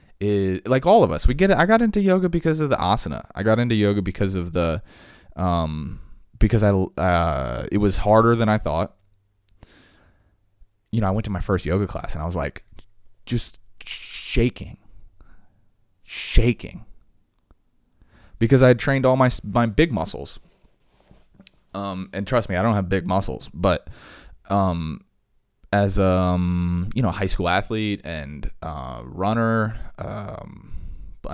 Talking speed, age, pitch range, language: 155 wpm, 20-39, 90-110 Hz, English